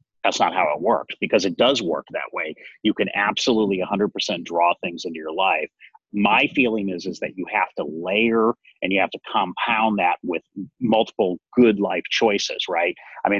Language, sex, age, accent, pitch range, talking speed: English, male, 30-49, American, 95-125 Hz, 195 wpm